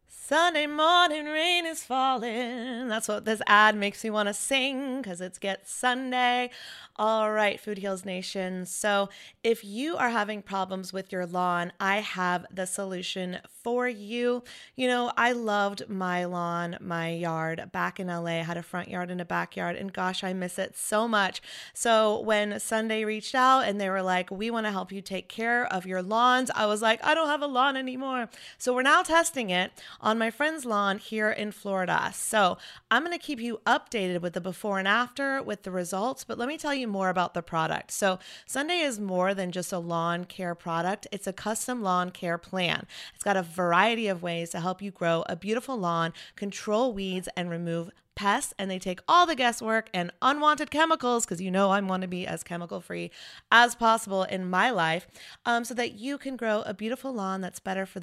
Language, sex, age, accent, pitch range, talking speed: English, female, 30-49, American, 185-245 Hz, 205 wpm